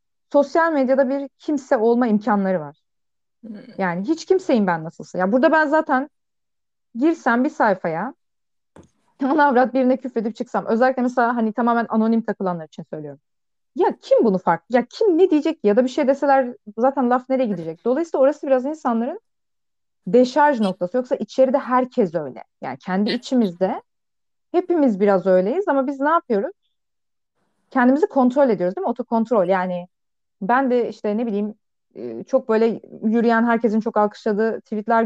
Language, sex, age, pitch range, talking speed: Turkish, female, 30-49, 205-265 Hz, 150 wpm